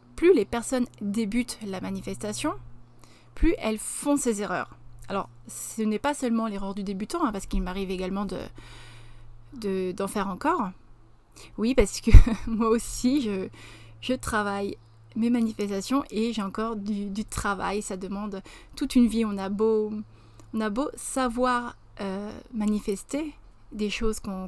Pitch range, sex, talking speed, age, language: 195-235 Hz, female, 150 wpm, 30-49, French